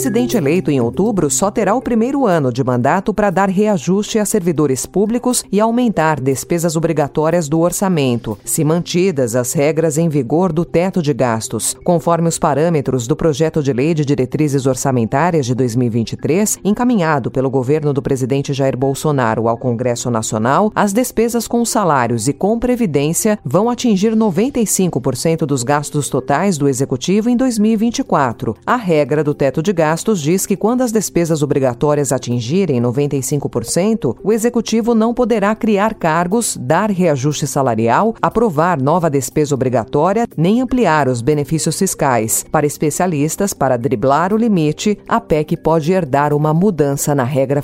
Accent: Brazilian